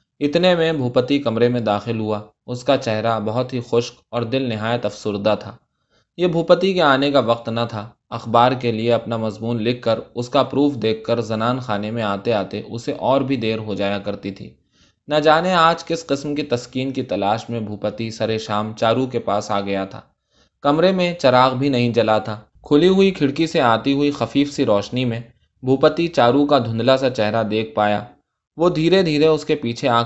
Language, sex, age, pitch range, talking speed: Urdu, male, 20-39, 110-145 Hz, 205 wpm